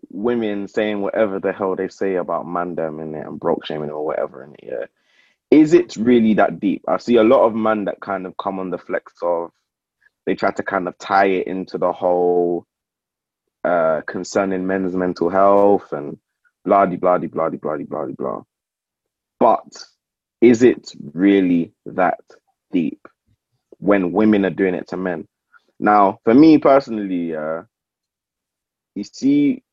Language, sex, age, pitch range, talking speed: English, male, 20-39, 90-145 Hz, 160 wpm